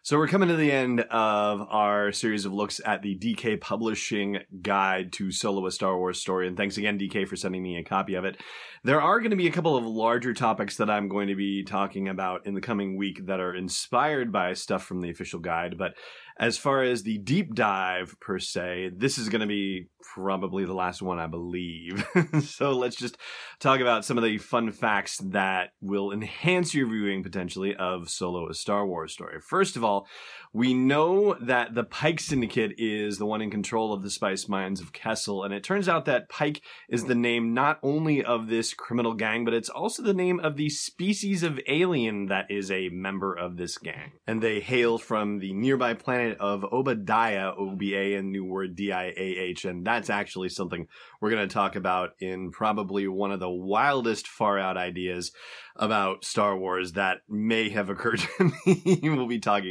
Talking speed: 205 wpm